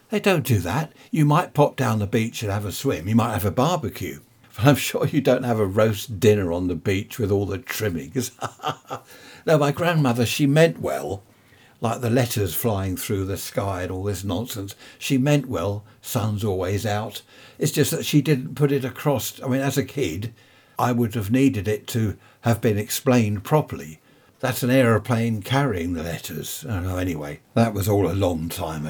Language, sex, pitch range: English, male, 100-135 Hz